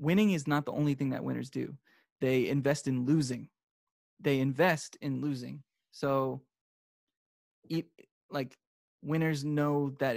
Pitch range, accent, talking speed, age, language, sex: 130-150 Hz, American, 135 wpm, 20-39, English, male